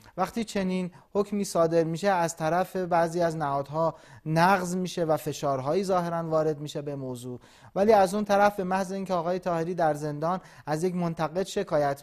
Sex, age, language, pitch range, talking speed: male, 30-49, Persian, 150-185 Hz, 170 wpm